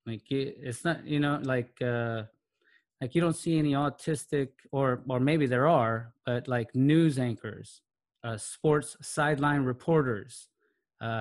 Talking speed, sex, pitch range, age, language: 145 wpm, male, 120-155 Hz, 20-39, English